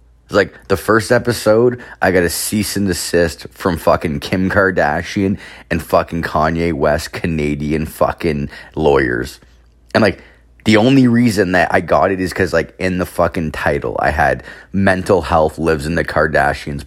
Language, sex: English, male